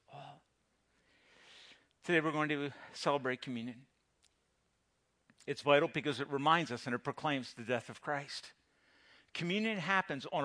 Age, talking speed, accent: 50-69, 125 wpm, American